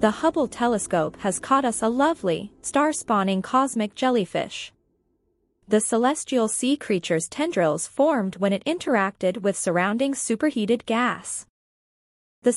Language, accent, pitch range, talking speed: English, American, 200-275 Hz, 120 wpm